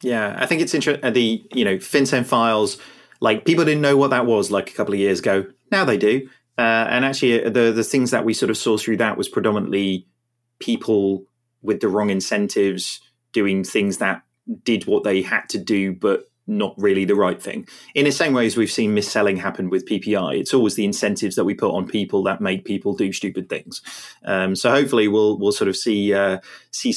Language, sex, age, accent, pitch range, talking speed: English, male, 30-49, British, 100-135 Hz, 220 wpm